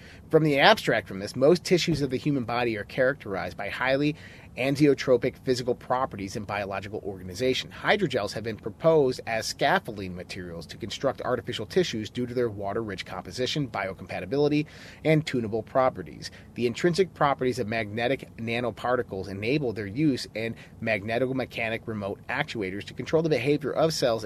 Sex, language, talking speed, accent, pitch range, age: male, English, 150 wpm, American, 100-145 Hz, 30-49